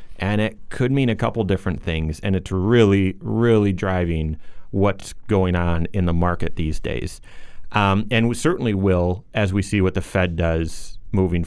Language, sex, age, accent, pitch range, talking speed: English, male, 30-49, American, 95-135 Hz, 180 wpm